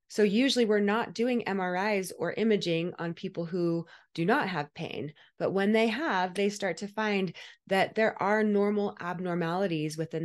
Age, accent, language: 20-39, American, English